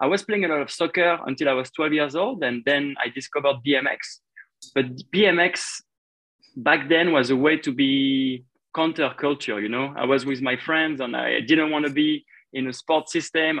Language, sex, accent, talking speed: English, male, French, 200 wpm